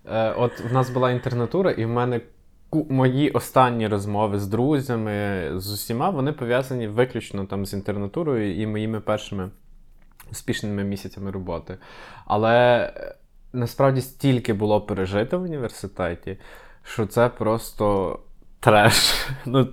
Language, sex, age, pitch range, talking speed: Ukrainian, male, 20-39, 105-130 Hz, 120 wpm